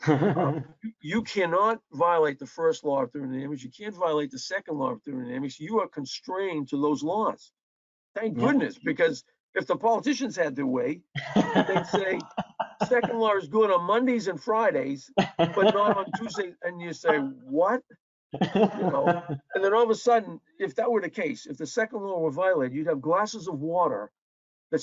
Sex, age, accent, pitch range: male, 50-69, American, 155-230 Hz